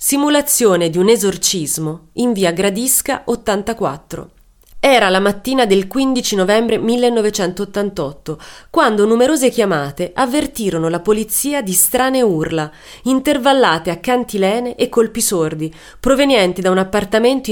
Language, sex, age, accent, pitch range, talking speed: Italian, female, 30-49, native, 175-240 Hz, 115 wpm